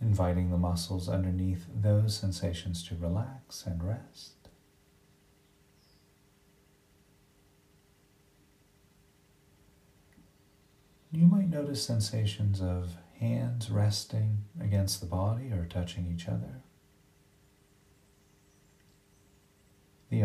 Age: 40-59